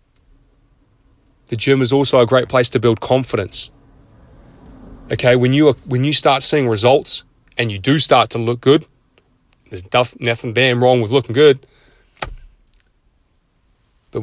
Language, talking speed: English, 145 wpm